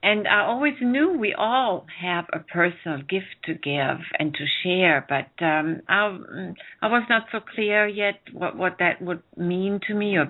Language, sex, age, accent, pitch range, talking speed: English, female, 60-79, German, 170-225 Hz, 185 wpm